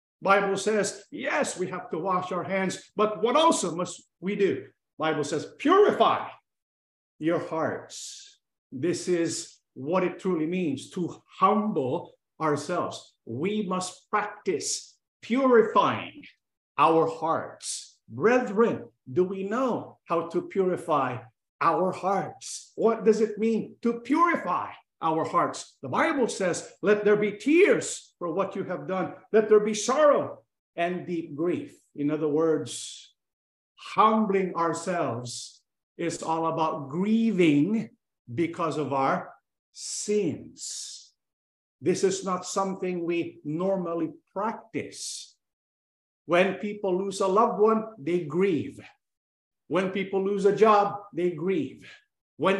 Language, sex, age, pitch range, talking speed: English, male, 50-69, 170-215 Hz, 125 wpm